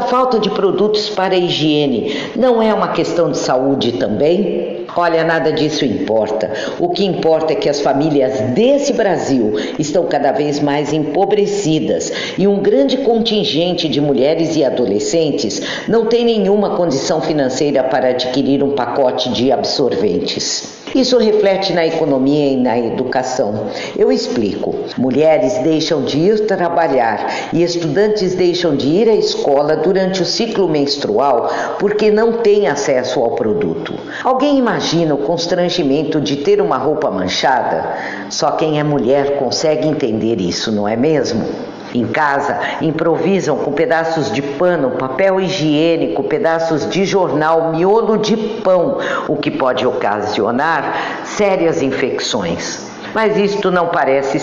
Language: Portuguese